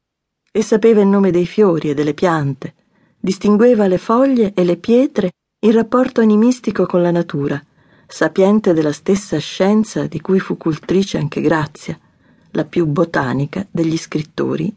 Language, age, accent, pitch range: Italian, 40-59, native, 160-220 Hz